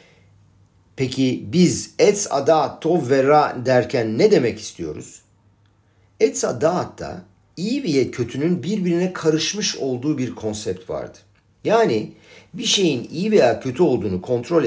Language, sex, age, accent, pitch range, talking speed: Turkish, male, 50-69, native, 105-160 Hz, 120 wpm